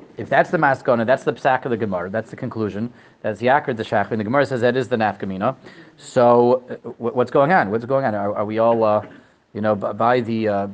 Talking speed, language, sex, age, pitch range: 245 wpm, English, male, 30-49, 120-160 Hz